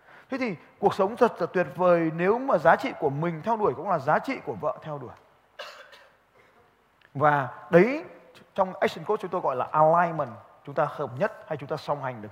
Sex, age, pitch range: male, 20-39, 145-205 Hz